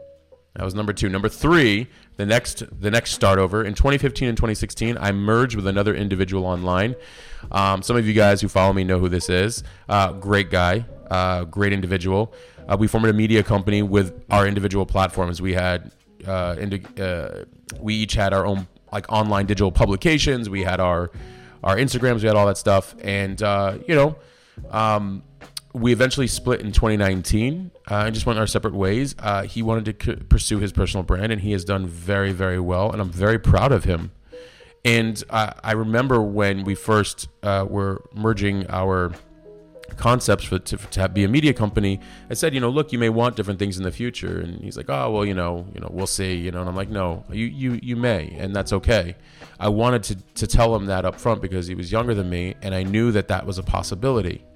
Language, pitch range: English, 95-115 Hz